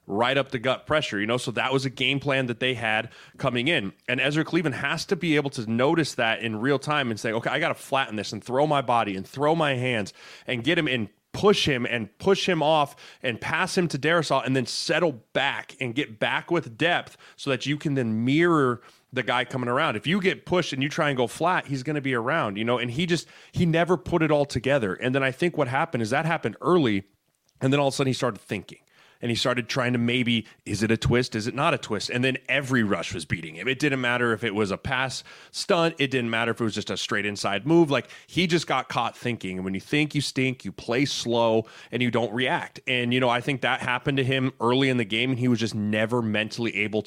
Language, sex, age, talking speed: English, male, 30-49, 265 wpm